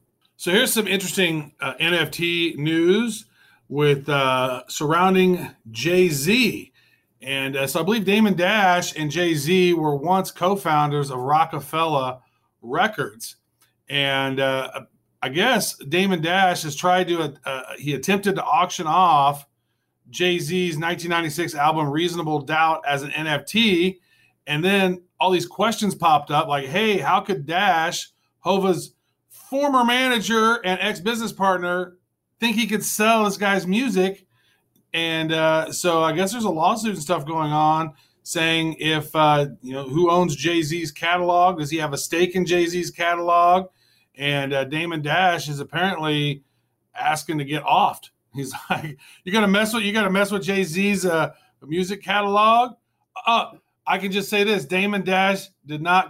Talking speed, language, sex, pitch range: 150 wpm, English, male, 150-190 Hz